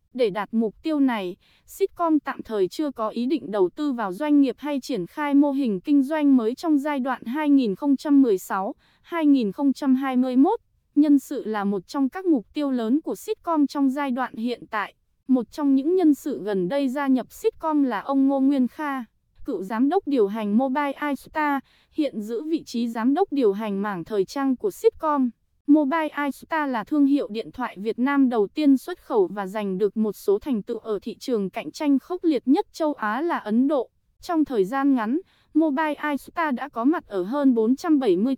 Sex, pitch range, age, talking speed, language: female, 230-300 Hz, 20-39, 195 wpm, Vietnamese